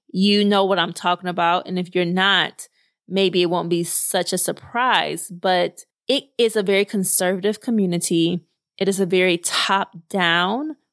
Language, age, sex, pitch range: English, 20-39, female, 175-205 Hz